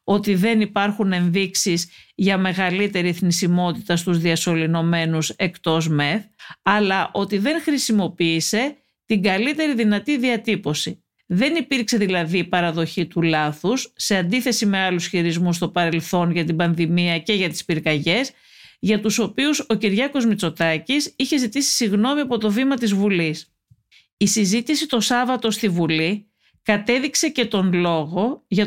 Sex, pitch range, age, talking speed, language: female, 175-240 Hz, 50-69, 135 wpm, Greek